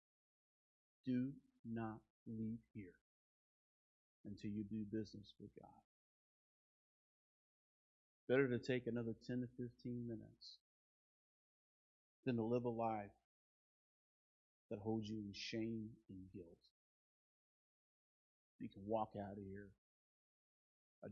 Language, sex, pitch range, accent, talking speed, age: English, male, 105-125 Hz, American, 105 wpm, 30-49